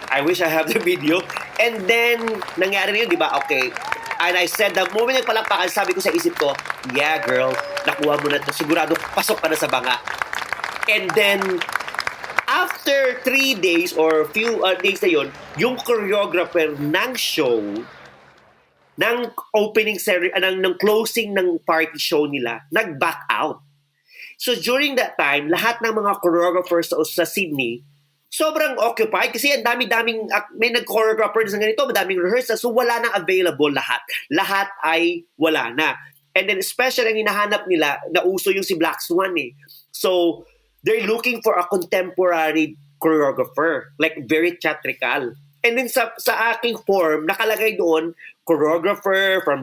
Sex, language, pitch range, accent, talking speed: male, English, 165-235 Hz, Filipino, 160 wpm